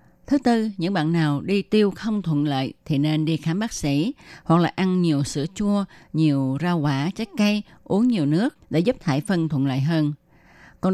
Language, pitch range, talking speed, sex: Vietnamese, 145-190 Hz, 210 wpm, female